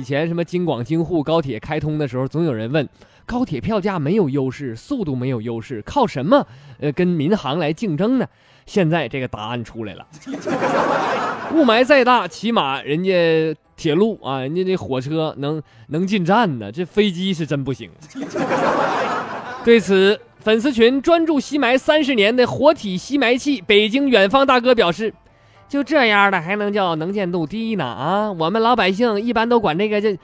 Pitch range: 150-235 Hz